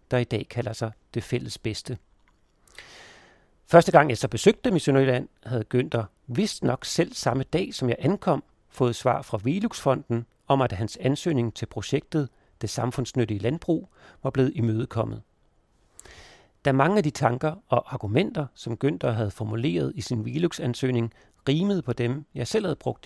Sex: male